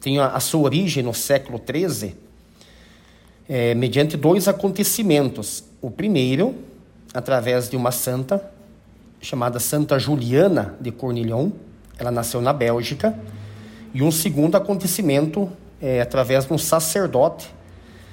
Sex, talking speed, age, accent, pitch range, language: male, 110 wpm, 40-59, Brazilian, 125-155 Hz, Portuguese